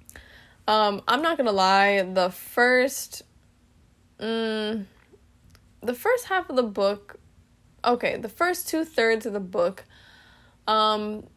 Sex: female